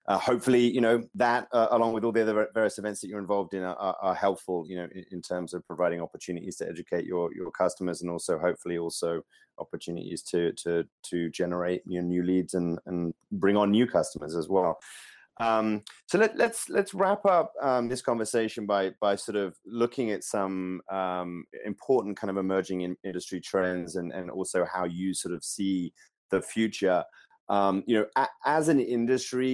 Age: 30-49